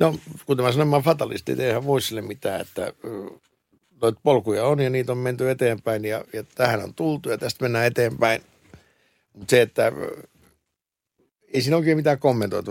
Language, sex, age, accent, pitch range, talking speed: Finnish, male, 60-79, native, 105-130 Hz, 170 wpm